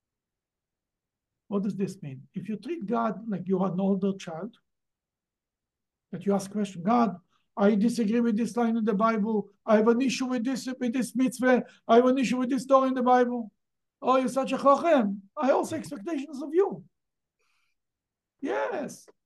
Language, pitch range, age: English, 185-240 Hz, 60-79